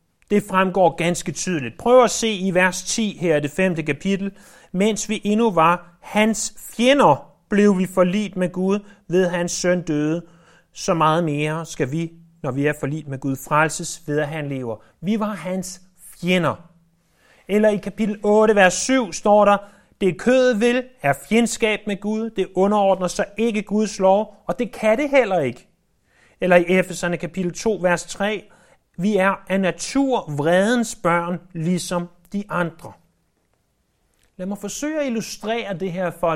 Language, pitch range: Danish, 160-205 Hz